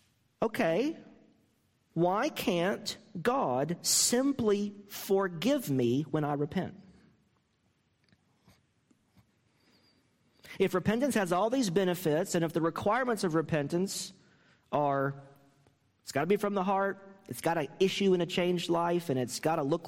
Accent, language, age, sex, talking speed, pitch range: American, English, 40-59, male, 130 wpm, 135-195 Hz